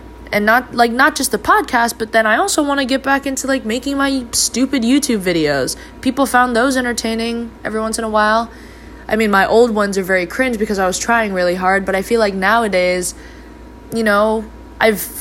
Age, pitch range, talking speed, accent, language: 20-39, 185-235 Hz, 210 wpm, American, English